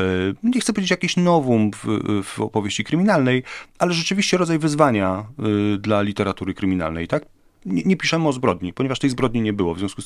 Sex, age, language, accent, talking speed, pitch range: male, 40-59, Polish, native, 175 wpm, 95-130 Hz